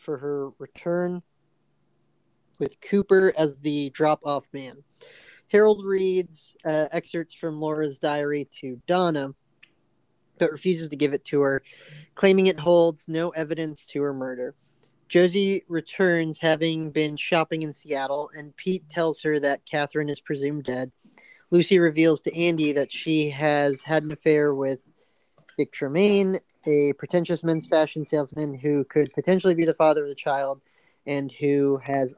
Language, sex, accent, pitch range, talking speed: English, male, American, 145-175 Hz, 145 wpm